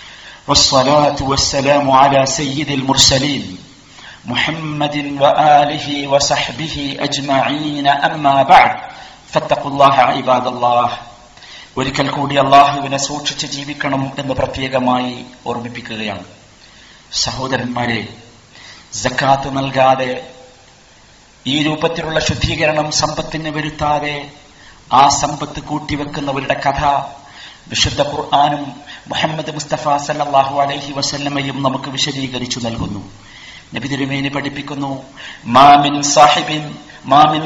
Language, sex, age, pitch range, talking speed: Malayalam, male, 50-69, 135-155 Hz, 50 wpm